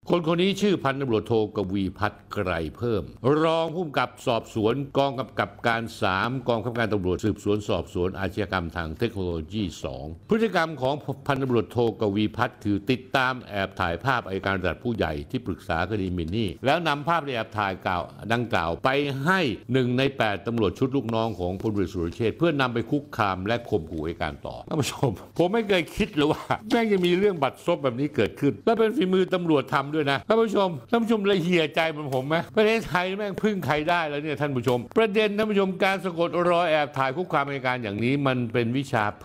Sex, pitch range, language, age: male, 110-165 Hz, Thai, 60-79